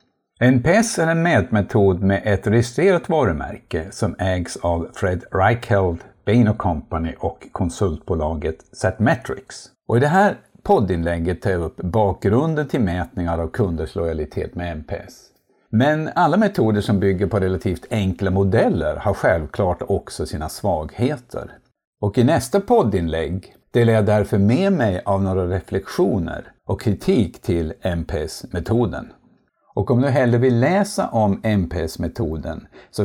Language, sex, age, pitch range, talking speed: Swedish, male, 60-79, 90-120 Hz, 135 wpm